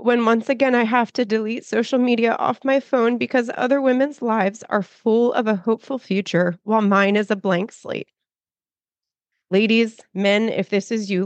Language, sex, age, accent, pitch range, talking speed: English, female, 30-49, American, 175-225 Hz, 180 wpm